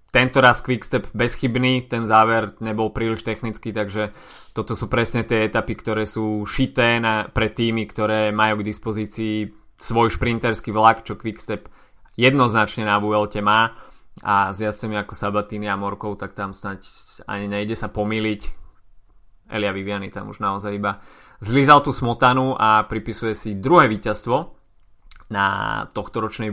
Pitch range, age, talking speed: 105-125 Hz, 20-39, 145 wpm